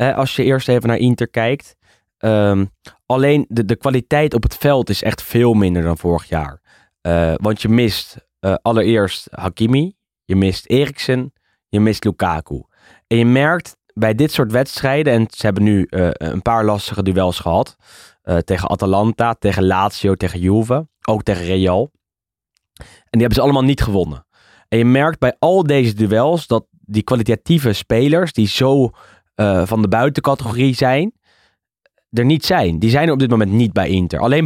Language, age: Dutch, 20-39